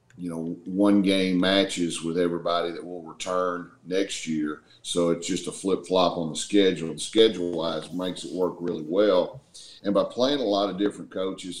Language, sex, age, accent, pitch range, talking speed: English, male, 40-59, American, 85-95 Hz, 180 wpm